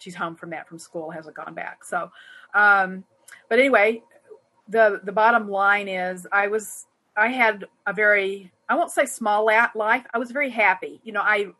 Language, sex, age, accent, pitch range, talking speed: English, female, 40-59, American, 180-215 Hz, 185 wpm